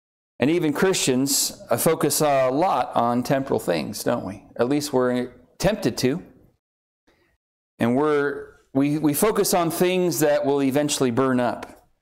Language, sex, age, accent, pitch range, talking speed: English, male, 40-59, American, 145-210 Hz, 135 wpm